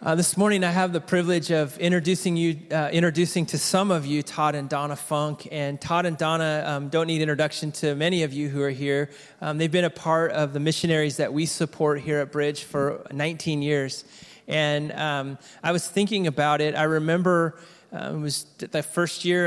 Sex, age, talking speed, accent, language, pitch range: male, 30-49, 205 wpm, American, English, 145-175 Hz